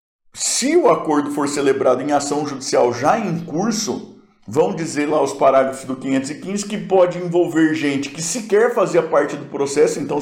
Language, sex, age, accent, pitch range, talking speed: Portuguese, male, 50-69, Brazilian, 135-170 Hz, 170 wpm